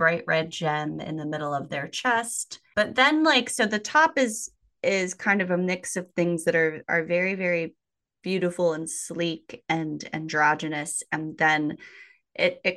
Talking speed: 175 wpm